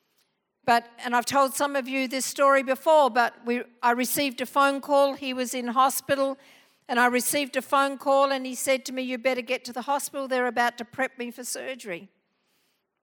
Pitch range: 235-275 Hz